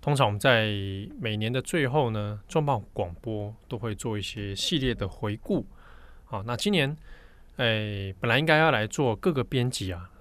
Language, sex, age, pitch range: Chinese, male, 20-39, 100-125 Hz